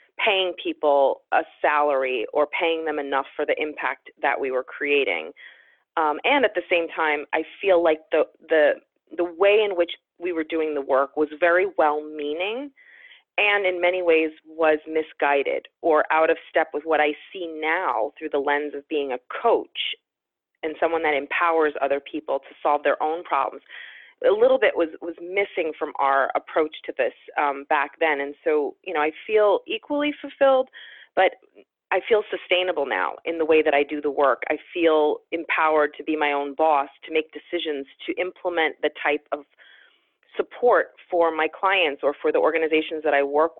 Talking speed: 185 wpm